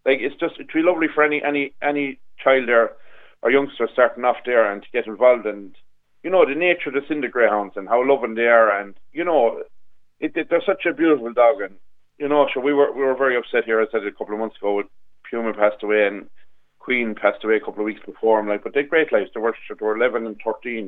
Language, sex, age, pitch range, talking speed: English, male, 40-59, 105-140 Hz, 260 wpm